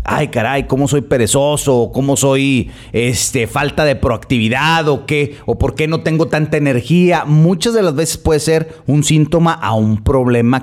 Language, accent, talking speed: Spanish, Mexican, 175 wpm